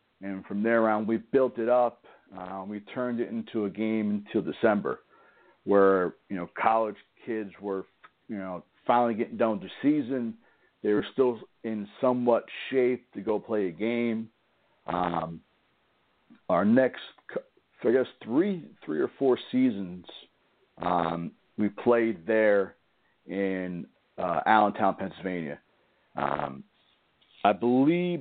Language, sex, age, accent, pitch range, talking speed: English, male, 50-69, American, 95-115 Hz, 130 wpm